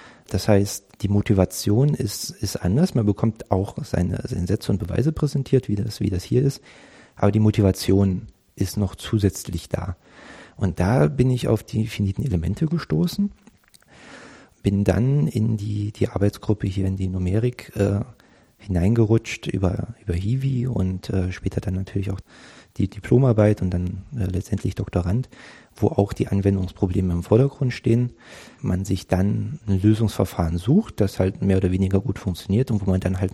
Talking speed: 160 wpm